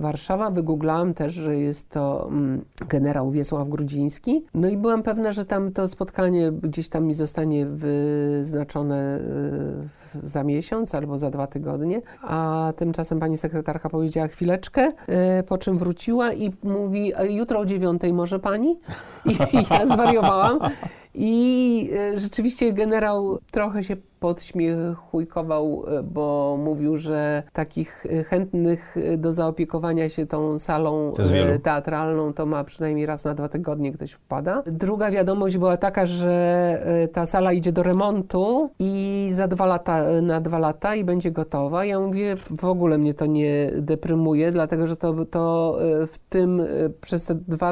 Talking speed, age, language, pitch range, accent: 140 wpm, 50-69, Polish, 155-185 Hz, native